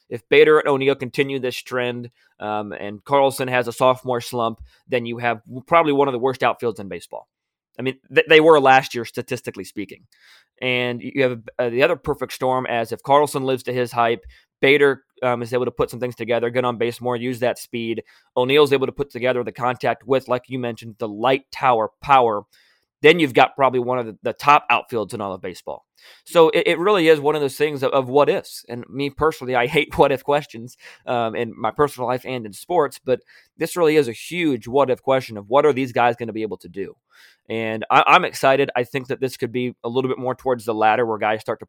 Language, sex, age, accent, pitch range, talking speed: English, male, 20-39, American, 115-135 Hz, 240 wpm